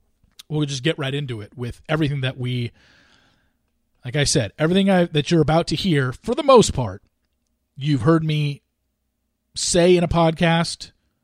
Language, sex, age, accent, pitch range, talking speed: English, male, 40-59, American, 110-160 Hz, 160 wpm